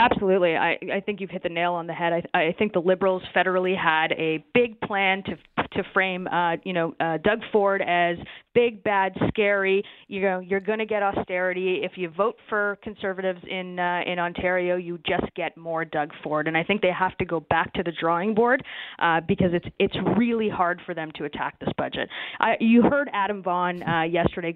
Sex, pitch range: female, 170-210 Hz